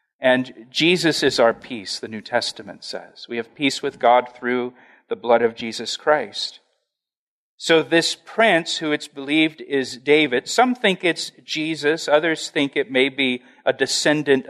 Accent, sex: American, male